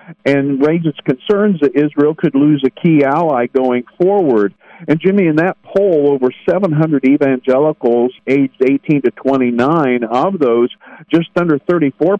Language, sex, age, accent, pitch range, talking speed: English, male, 50-69, American, 130-165 Hz, 145 wpm